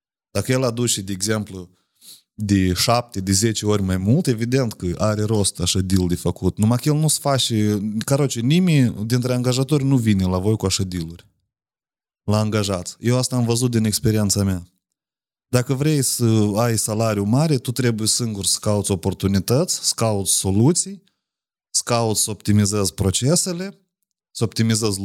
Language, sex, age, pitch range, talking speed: Romanian, male, 30-49, 100-130 Hz, 155 wpm